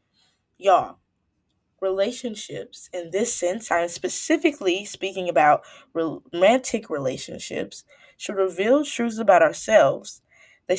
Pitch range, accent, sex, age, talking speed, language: 180-265 Hz, American, female, 10-29, 100 wpm, English